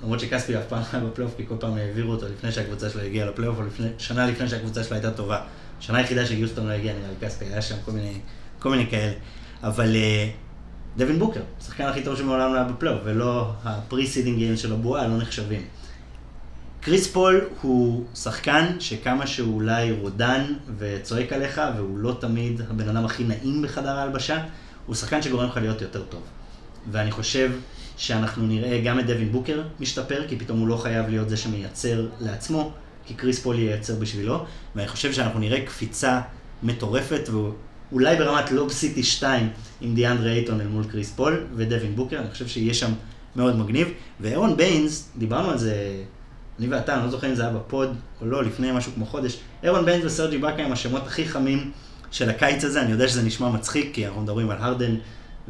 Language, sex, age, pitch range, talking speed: Hebrew, male, 30-49, 110-130 Hz, 170 wpm